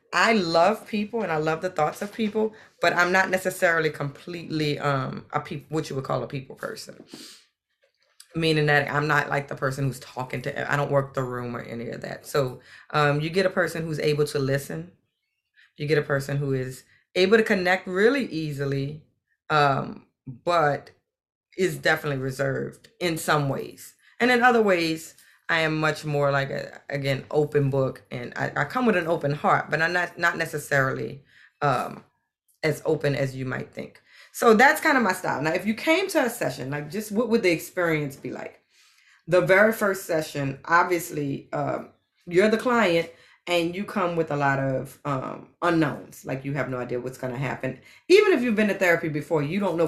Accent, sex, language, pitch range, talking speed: American, female, English, 140-185 Hz, 195 wpm